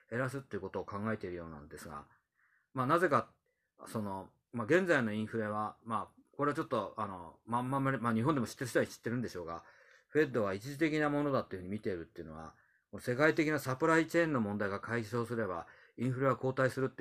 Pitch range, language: 105-130 Hz, Japanese